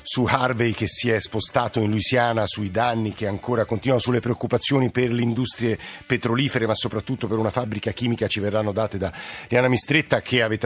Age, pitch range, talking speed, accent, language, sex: 50-69, 105-125 Hz, 185 wpm, native, Italian, male